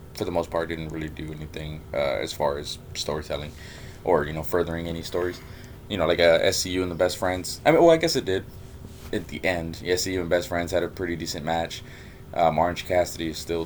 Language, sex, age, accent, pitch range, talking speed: English, male, 20-39, American, 80-95 Hz, 235 wpm